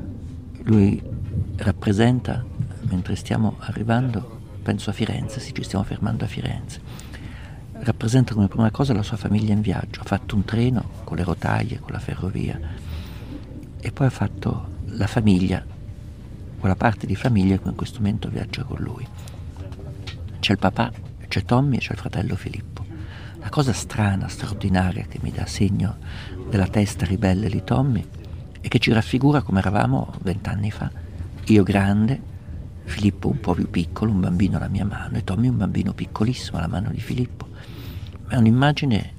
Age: 50-69